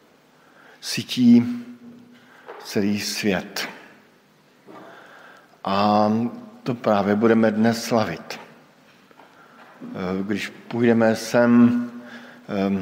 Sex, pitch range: male, 105-120 Hz